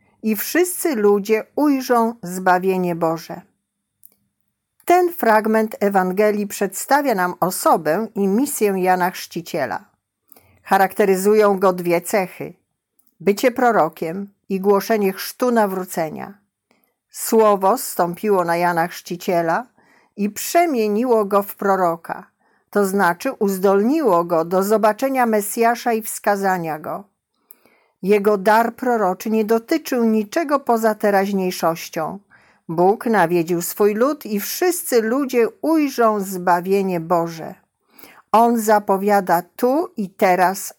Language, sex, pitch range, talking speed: Polish, female, 185-230 Hz, 100 wpm